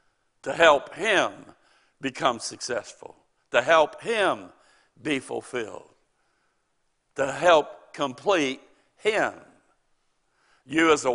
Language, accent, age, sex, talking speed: English, American, 60-79, male, 90 wpm